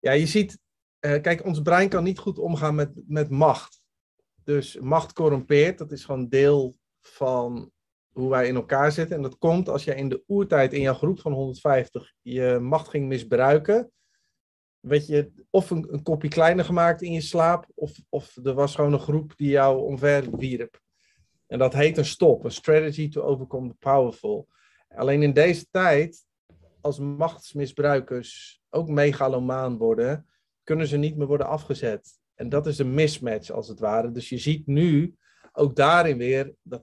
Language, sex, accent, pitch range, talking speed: Dutch, male, Dutch, 125-155 Hz, 175 wpm